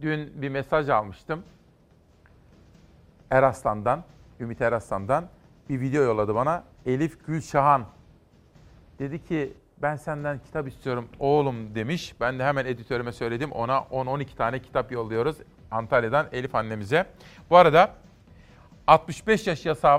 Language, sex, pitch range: Turkish, male, 125-155 Hz